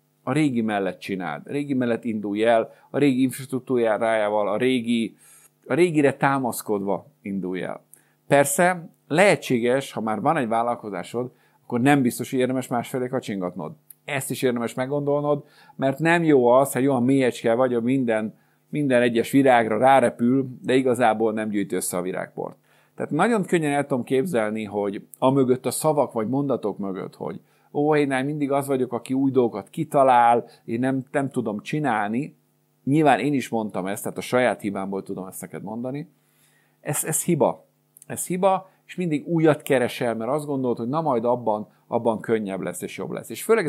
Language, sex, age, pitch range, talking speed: Hungarian, male, 50-69, 115-140 Hz, 170 wpm